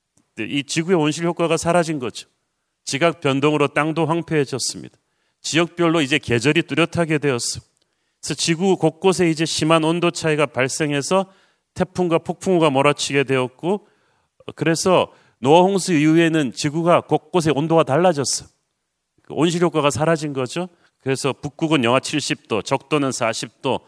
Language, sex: Korean, male